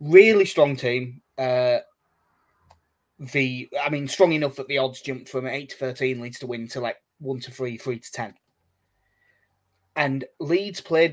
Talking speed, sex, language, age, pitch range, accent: 165 wpm, male, English, 20-39, 125-150 Hz, British